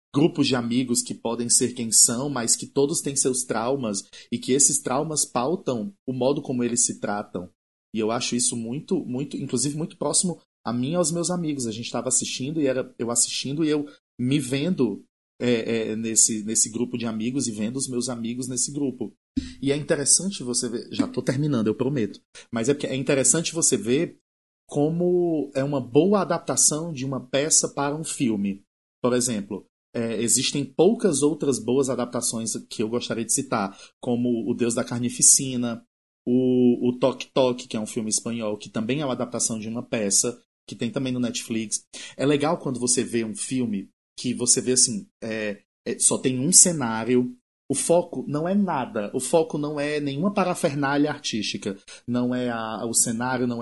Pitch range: 120-145 Hz